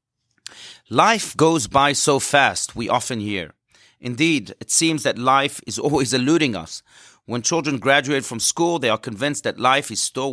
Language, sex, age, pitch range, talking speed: English, male, 40-59, 120-165 Hz, 170 wpm